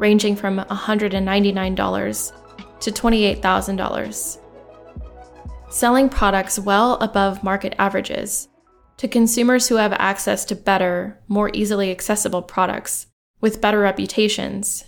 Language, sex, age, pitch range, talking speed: English, female, 10-29, 195-225 Hz, 100 wpm